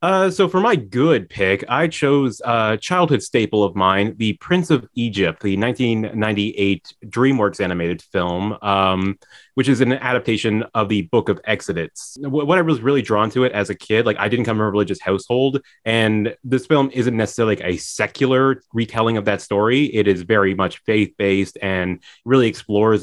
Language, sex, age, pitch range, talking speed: English, male, 30-49, 95-130 Hz, 190 wpm